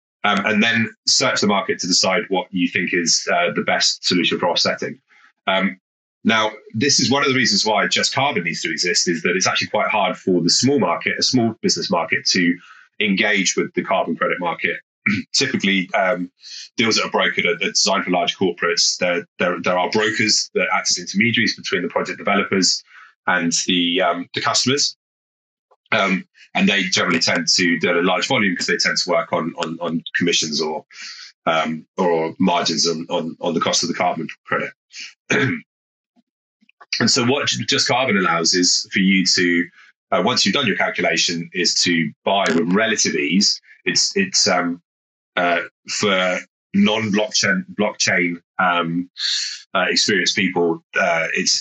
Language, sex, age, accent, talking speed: English, male, 30-49, British, 175 wpm